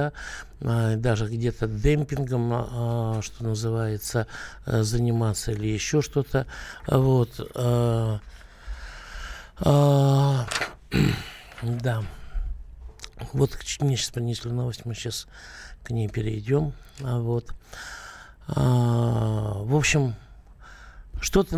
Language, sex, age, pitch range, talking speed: Russian, male, 60-79, 110-140 Hz, 65 wpm